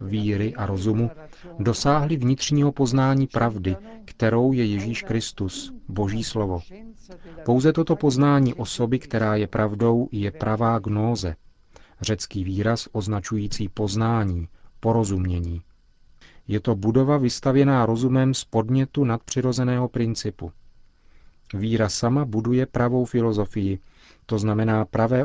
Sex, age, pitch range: male, 40-59, 105-125 Hz